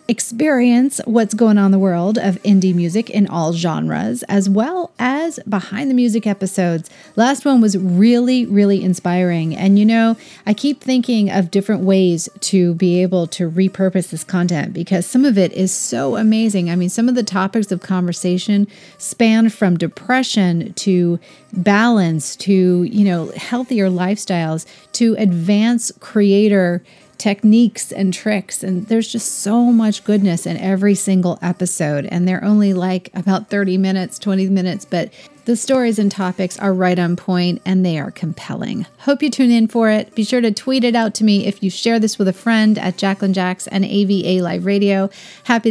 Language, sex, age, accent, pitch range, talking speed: English, female, 30-49, American, 185-230 Hz, 175 wpm